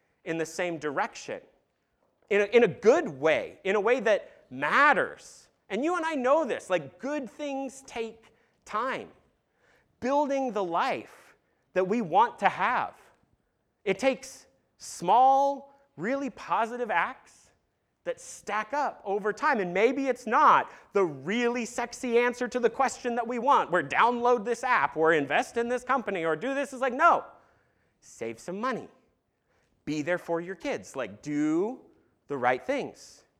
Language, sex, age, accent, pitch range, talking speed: English, male, 30-49, American, 190-280 Hz, 155 wpm